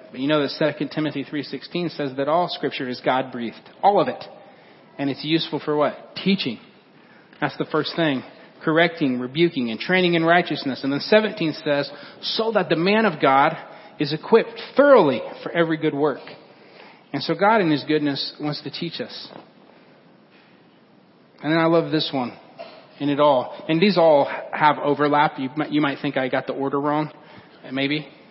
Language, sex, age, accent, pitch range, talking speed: English, male, 40-59, American, 140-170 Hz, 180 wpm